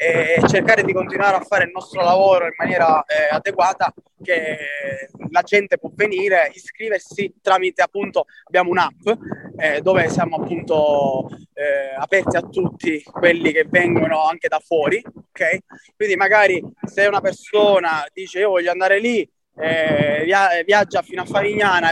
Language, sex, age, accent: Italian, male, 20-39, native